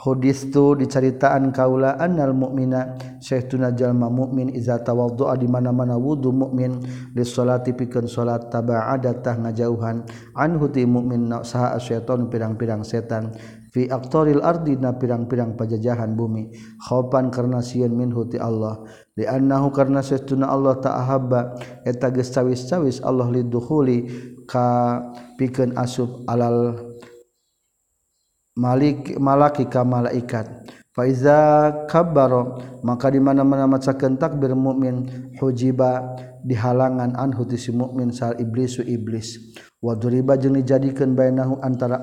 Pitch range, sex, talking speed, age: 120-135 Hz, male, 110 wpm, 50-69